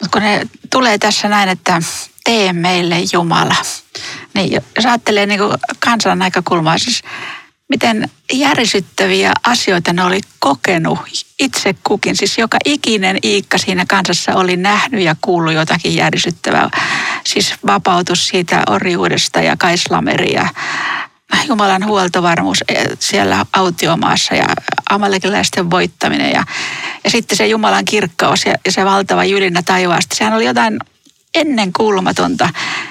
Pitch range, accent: 185-230 Hz, native